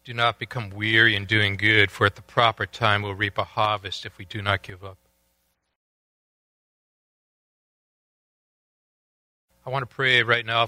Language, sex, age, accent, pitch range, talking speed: English, male, 40-59, American, 85-110 Hz, 155 wpm